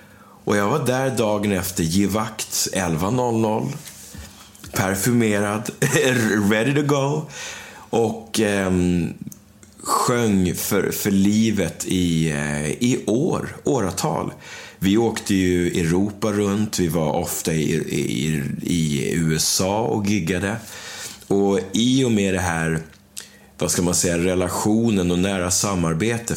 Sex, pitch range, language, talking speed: male, 85-110 Hz, Swedish, 115 wpm